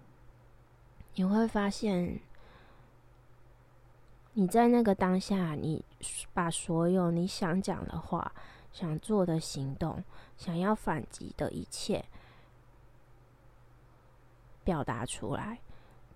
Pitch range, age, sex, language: 135-190 Hz, 20-39, female, Chinese